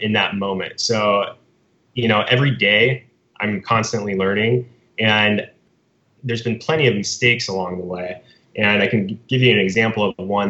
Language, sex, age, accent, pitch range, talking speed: English, male, 20-39, American, 100-120 Hz, 165 wpm